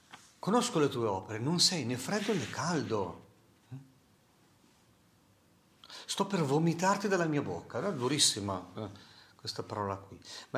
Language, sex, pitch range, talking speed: Italian, male, 105-135 Hz, 125 wpm